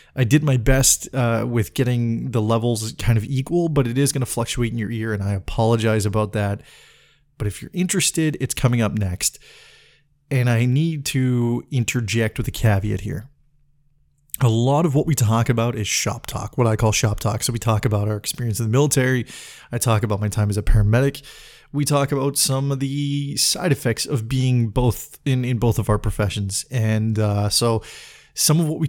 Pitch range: 110-135 Hz